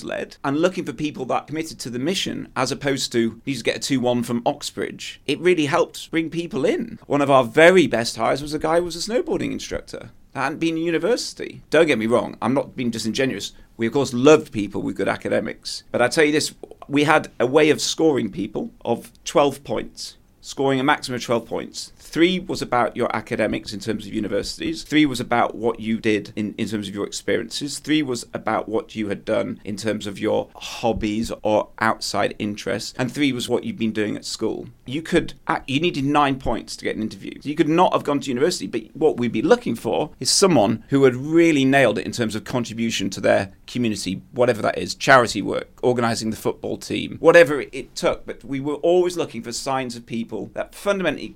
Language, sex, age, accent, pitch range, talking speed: English, male, 30-49, British, 115-150 Hz, 220 wpm